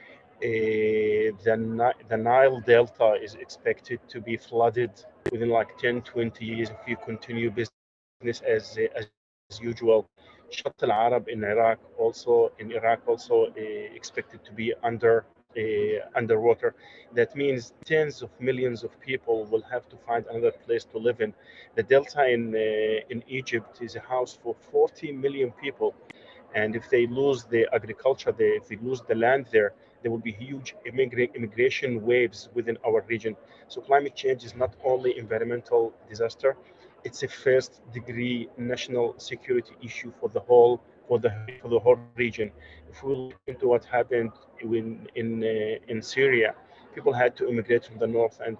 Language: English